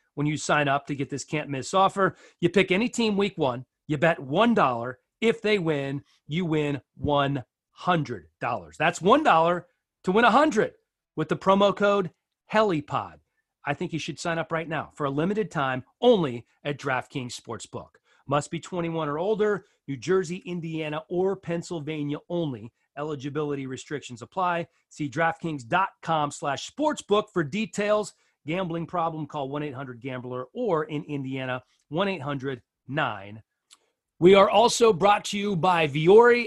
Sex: male